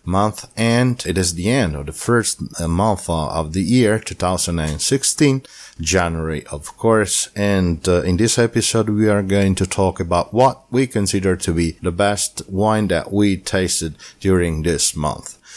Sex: male